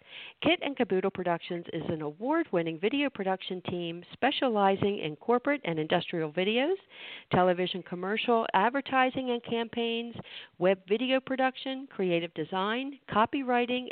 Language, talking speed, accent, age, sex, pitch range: English, 115 wpm, American, 50-69, female, 170-235 Hz